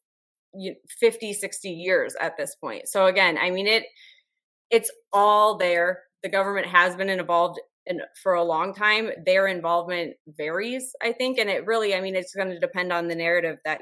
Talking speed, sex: 180 wpm, female